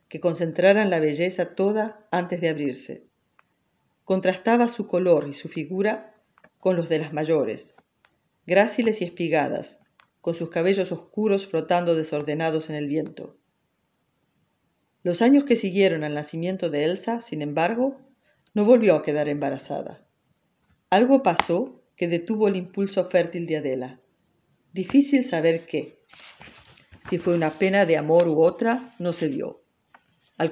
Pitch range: 160-195 Hz